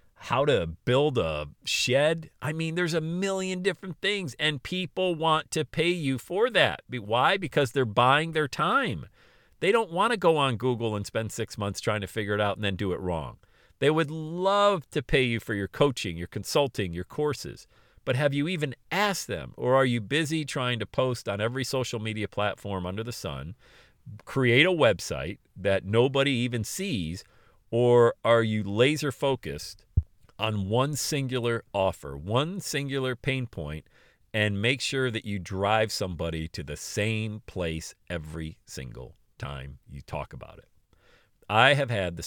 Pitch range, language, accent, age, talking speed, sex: 90-140 Hz, English, American, 50-69, 175 wpm, male